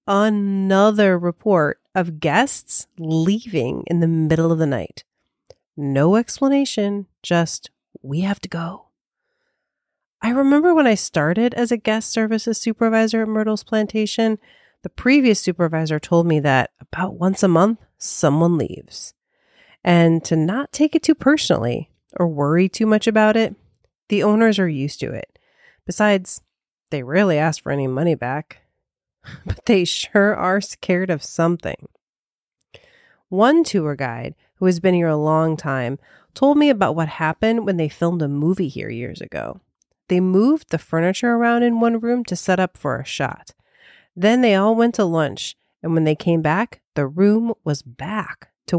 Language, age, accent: English, 30-49, American